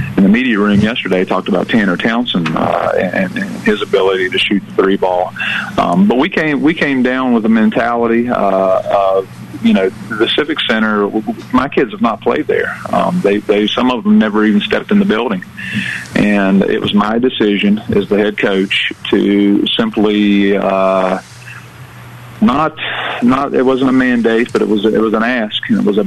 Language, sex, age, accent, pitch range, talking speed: English, male, 40-59, American, 100-110 Hz, 190 wpm